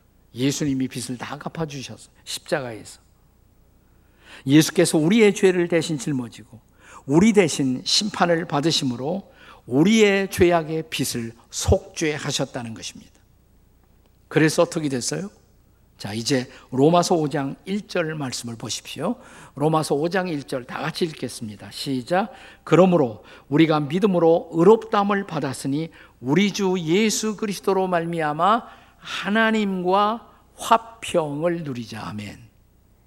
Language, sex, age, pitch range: Korean, male, 50-69, 125-180 Hz